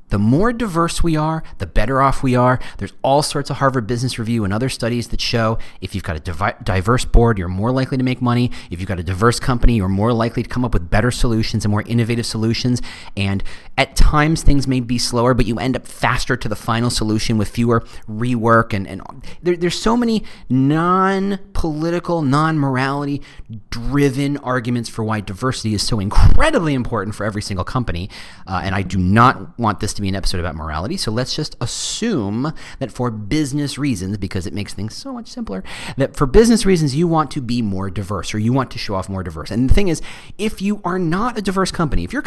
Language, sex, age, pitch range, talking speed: English, male, 30-49, 105-145 Hz, 215 wpm